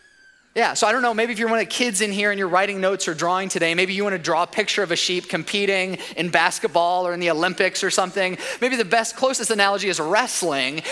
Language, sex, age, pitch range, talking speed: English, male, 20-39, 170-230 Hz, 260 wpm